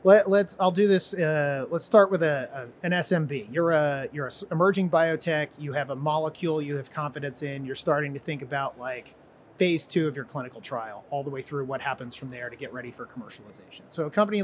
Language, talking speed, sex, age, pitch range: English, 230 wpm, male, 30-49, 140-170 Hz